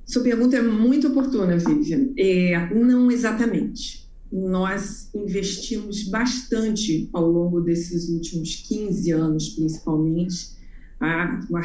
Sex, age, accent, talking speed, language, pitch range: female, 40-59, Brazilian, 110 wpm, Portuguese, 165-205 Hz